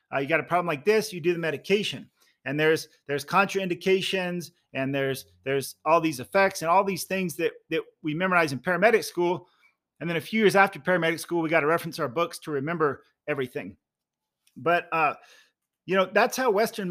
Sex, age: male, 40-59